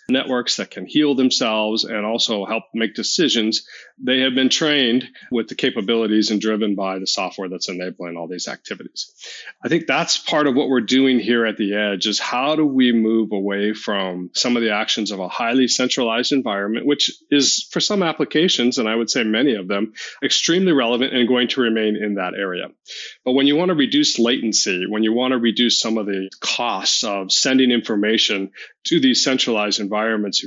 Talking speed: 195 wpm